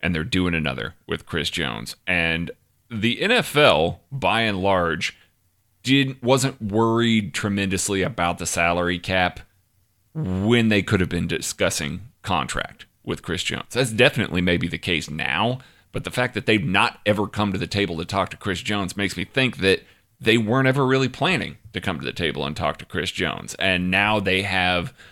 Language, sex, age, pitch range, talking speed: English, male, 30-49, 90-110 Hz, 180 wpm